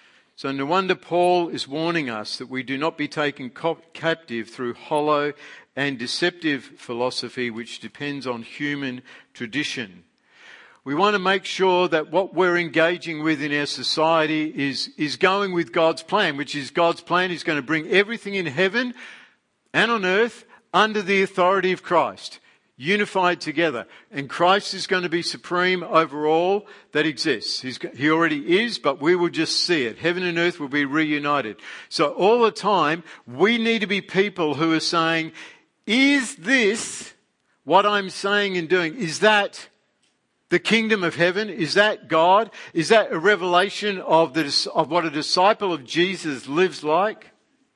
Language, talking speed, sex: English, 165 wpm, male